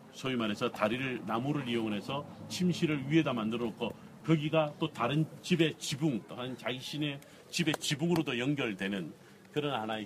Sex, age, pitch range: male, 40-59, 120-165 Hz